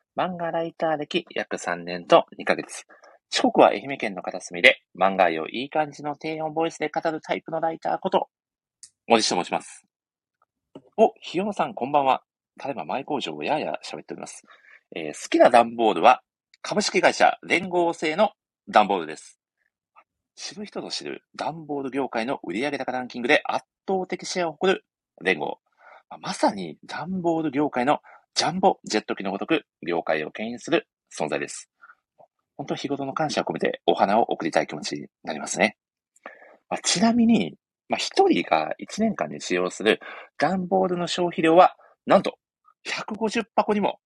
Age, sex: 40-59, male